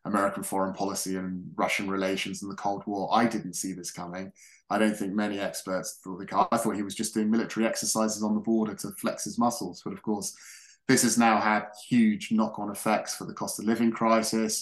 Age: 20-39